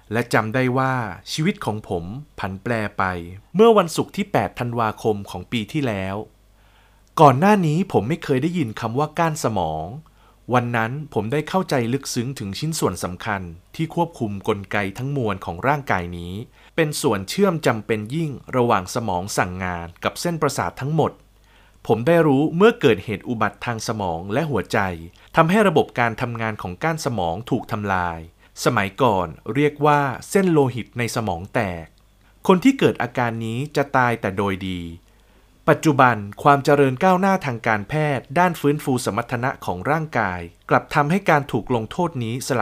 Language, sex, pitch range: Thai, male, 100-150 Hz